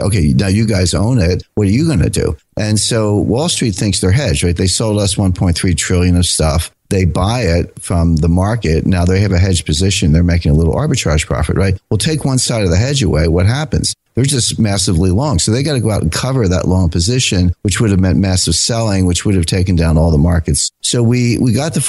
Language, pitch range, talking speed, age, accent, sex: English, 85-105 Hz, 245 wpm, 50-69, American, male